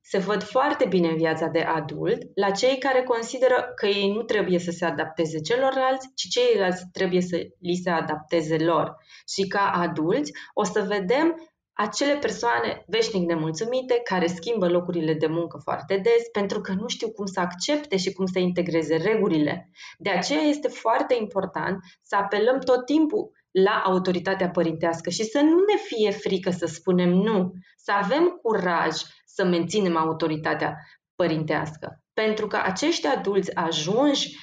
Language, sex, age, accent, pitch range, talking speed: Romanian, female, 20-39, native, 170-240 Hz, 155 wpm